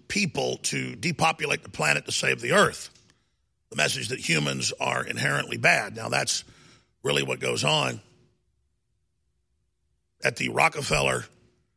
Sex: male